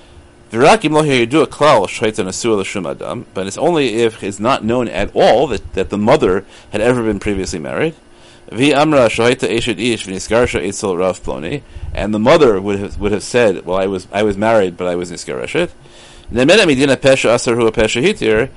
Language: English